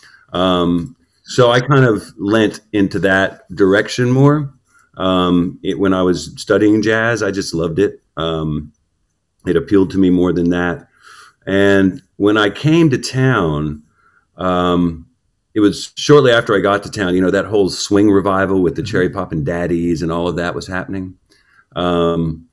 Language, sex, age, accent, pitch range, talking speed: English, male, 40-59, American, 80-100 Hz, 170 wpm